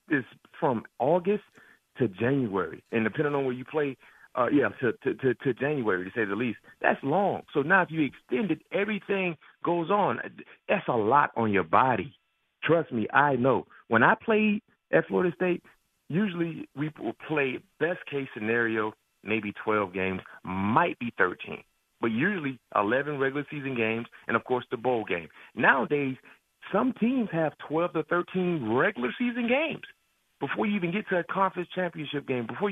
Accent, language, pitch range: American, English, 130-180 Hz